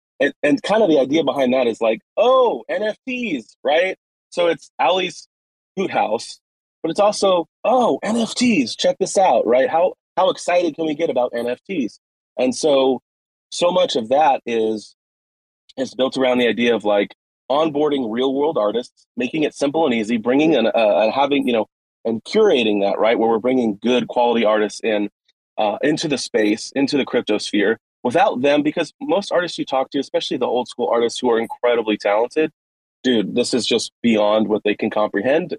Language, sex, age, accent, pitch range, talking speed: English, male, 30-49, American, 110-145 Hz, 180 wpm